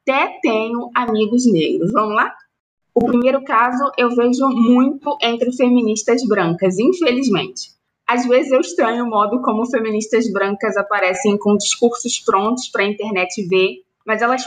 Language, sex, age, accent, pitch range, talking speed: Portuguese, female, 20-39, Brazilian, 195-250 Hz, 145 wpm